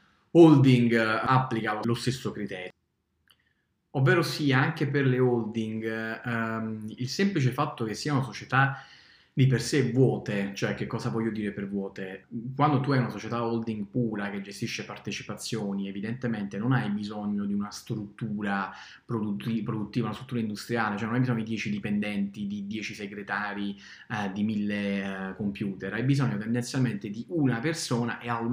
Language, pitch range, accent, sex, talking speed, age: Italian, 105-130 Hz, native, male, 150 wpm, 20-39